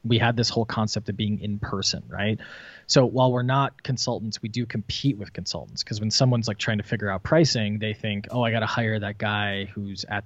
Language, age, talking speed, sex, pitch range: English, 20-39, 235 wpm, male, 100-120 Hz